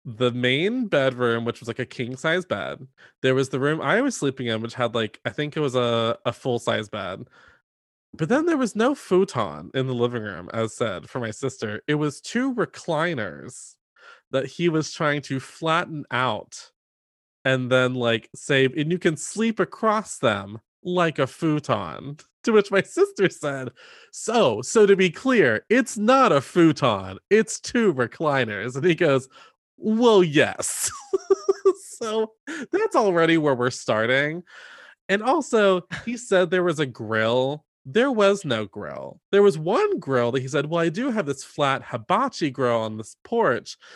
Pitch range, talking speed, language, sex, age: 125-195 Hz, 170 wpm, English, male, 20-39